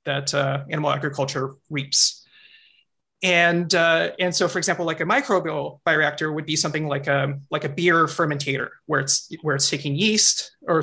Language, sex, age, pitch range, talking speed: English, male, 30-49, 145-180 Hz, 170 wpm